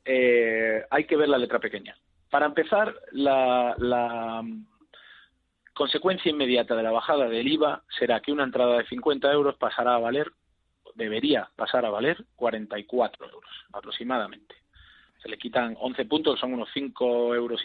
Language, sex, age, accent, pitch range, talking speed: Spanish, male, 40-59, Spanish, 115-145 Hz, 155 wpm